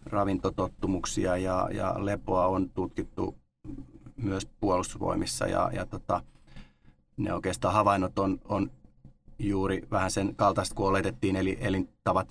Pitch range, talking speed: 90-100 Hz, 110 wpm